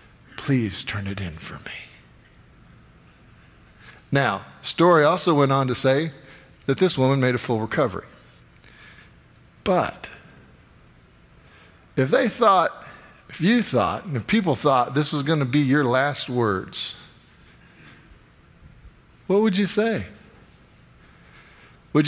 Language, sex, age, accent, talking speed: English, male, 50-69, American, 120 wpm